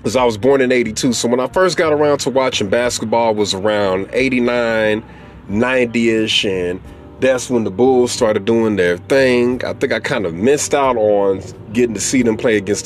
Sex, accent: male, American